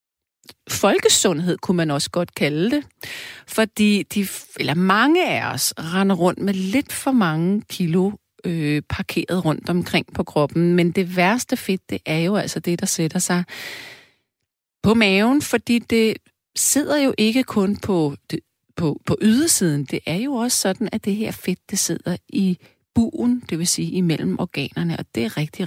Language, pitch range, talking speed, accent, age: Danish, 160-230 Hz, 170 wpm, native, 40-59